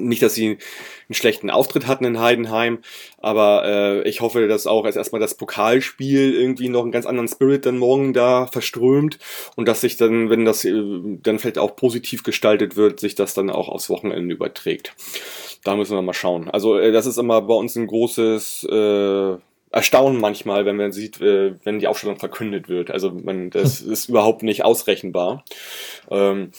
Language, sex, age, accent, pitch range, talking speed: German, male, 20-39, German, 105-120 Hz, 185 wpm